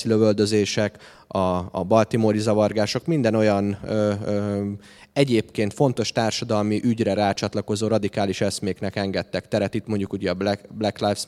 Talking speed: 135 wpm